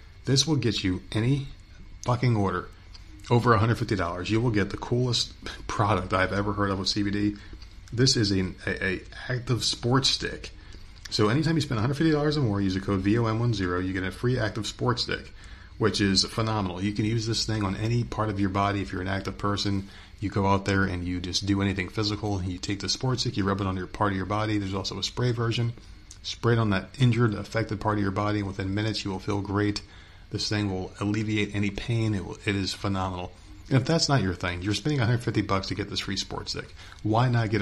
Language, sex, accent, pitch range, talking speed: English, male, American, 95-110 Hz, 225 wpm